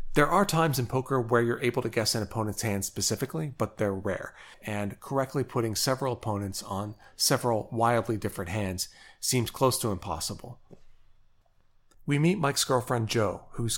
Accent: American